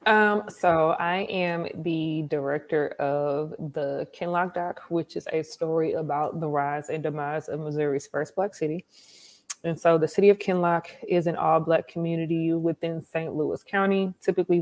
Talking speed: 160 wpm